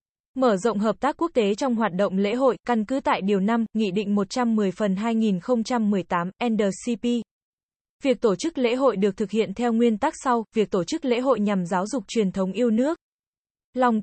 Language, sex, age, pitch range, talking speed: Vietnamese, female, 20-39, 200-250 Hz, 215 wpm